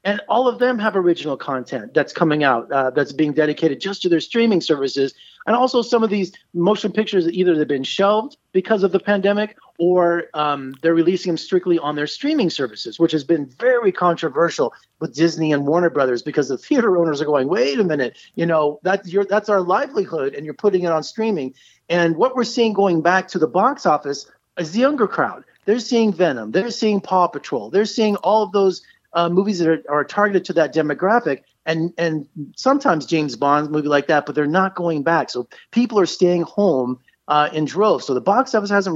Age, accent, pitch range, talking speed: 40-59, American, 150-200 Hz, 210 wpm